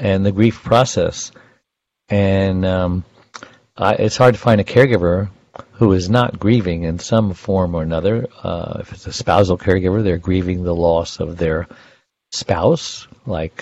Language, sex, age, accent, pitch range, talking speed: English, male, 60-79, American, 95-120 Hz, 155 wpm